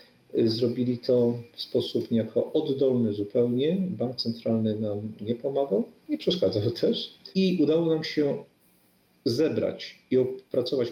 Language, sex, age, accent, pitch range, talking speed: Polish, male, 40-59, native, 115-150 Hz, 120 wpm